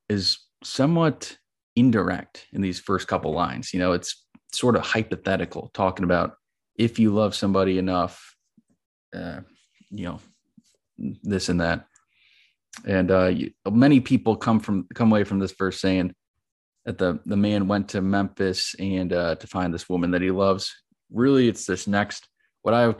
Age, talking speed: 20-39, 165 wpm